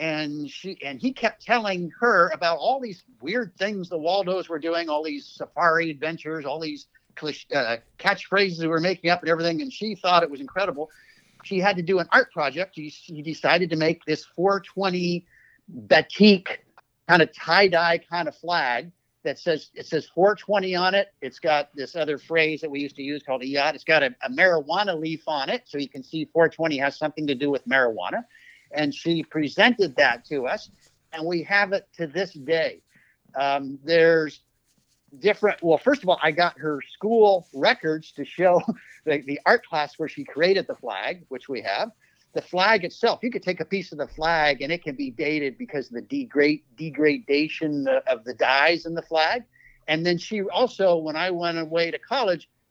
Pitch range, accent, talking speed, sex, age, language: 150-185 Hz, American, 200 wpm, male, 50-69, English